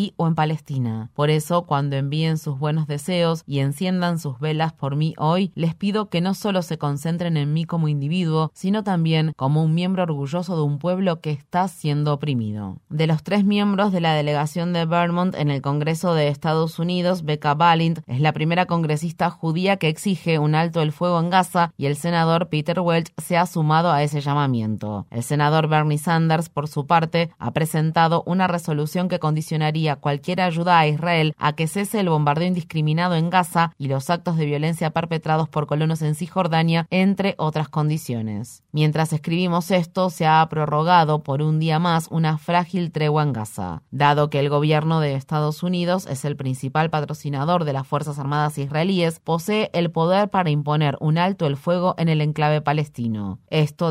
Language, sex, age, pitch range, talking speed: Spanish, female, 20-39, 150-170 Hz, 185 wpm